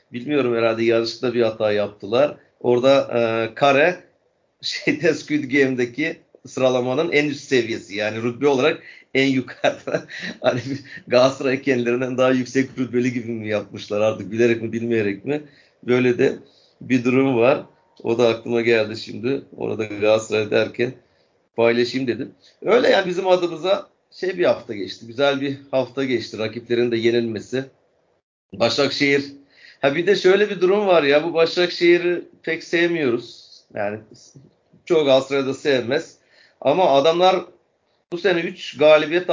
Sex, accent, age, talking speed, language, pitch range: male, native, 40-59, 135 wpm, Turkish, 120-155 Hz